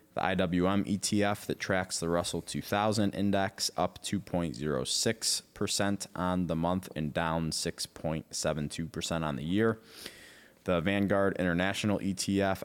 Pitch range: 80-100 Hz